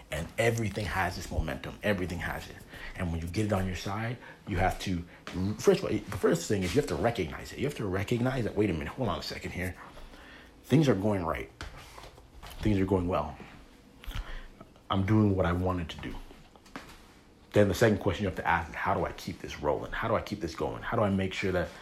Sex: male